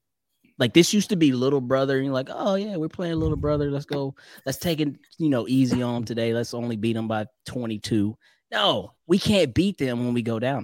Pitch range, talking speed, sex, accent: 115-170 Hz, 235 wpm, male, American